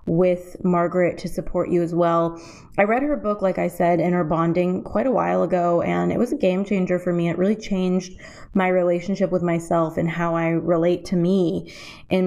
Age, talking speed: 20-39, 210 wpm